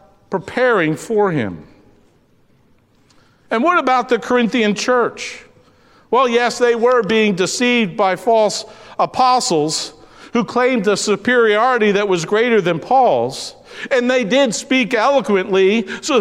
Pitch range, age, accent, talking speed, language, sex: 175-250 Hz, 50-69, American, 120 wpm, English, male